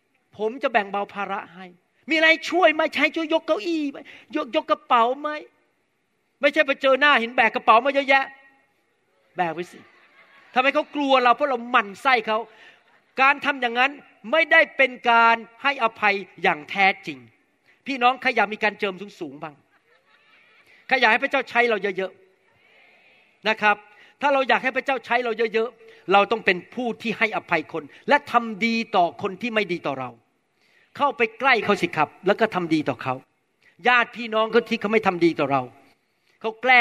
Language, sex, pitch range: Thai, male, 190-270 Hz